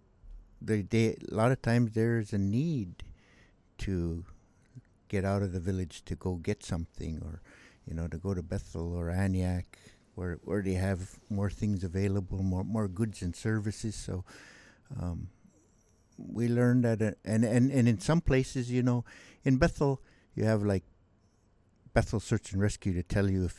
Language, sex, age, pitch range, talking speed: English, male, 60-79, 90-110 Hz, 170 wpm